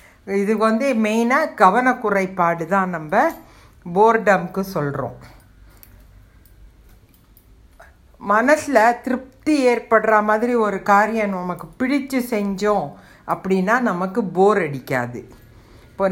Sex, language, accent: female, Tamil, native